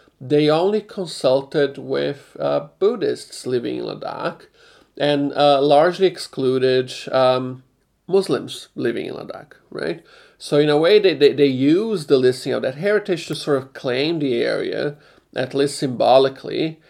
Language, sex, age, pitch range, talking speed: English, male, 40-59, 130-165 Hz, 145 wpm